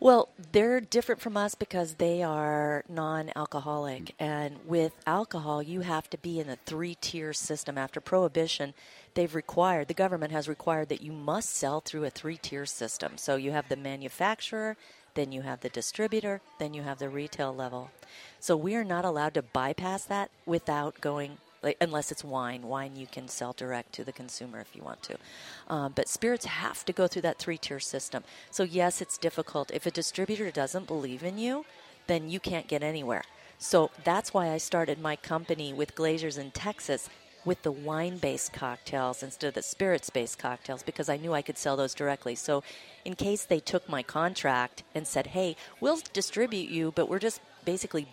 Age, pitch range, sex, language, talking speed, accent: 40-59, 140-180 Hz, female, English, 185 wpm, American